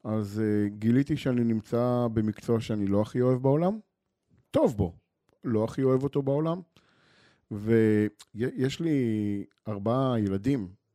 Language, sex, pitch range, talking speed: Hebrew, male, 105-140 Hz, 120 wpm